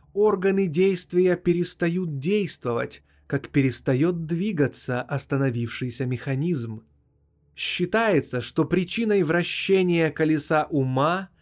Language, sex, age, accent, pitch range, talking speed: Russian, male, 20-39, native, 125-175 Hz, 80 wpm